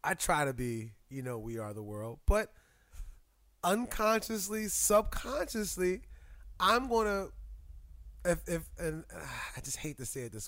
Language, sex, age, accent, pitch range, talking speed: English, male, 20-39, American, 150-210 Hz, 150 wpm